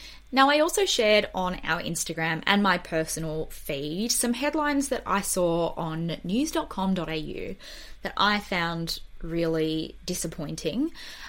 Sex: female